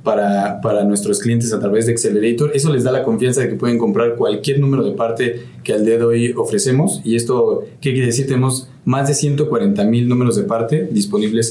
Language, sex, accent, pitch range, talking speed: Spanish, male, Mexican, 115-140 Hz, 215 wpm